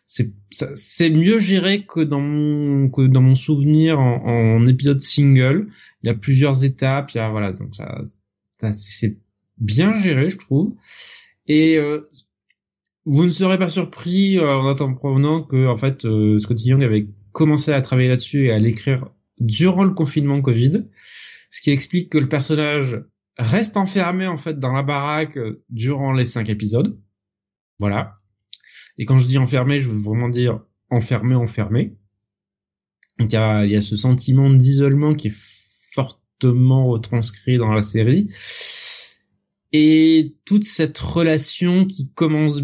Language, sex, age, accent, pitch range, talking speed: French, male, 20-39, French, 115-155 Hz, 160 wpm